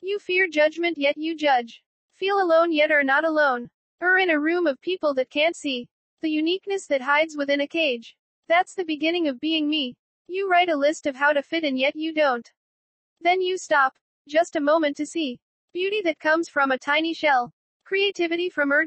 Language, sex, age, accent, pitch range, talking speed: English, female, 40-59, American, 290-345 Hz, 205 wpm